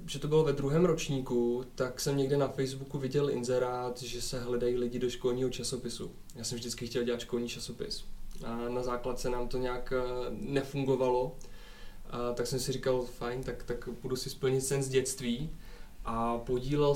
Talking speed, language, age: 180 wpm, Czech, 20-39